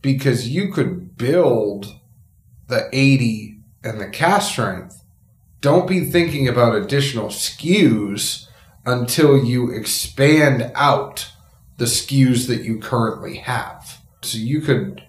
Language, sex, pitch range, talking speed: English, male, 110-140 Hz, 115 wpm